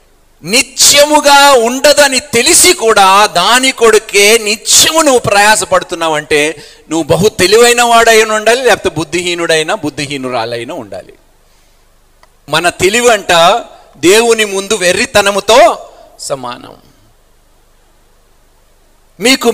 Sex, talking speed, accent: male, 85 wpm, native